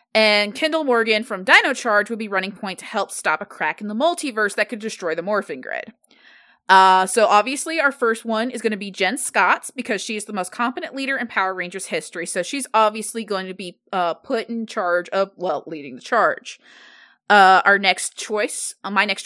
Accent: American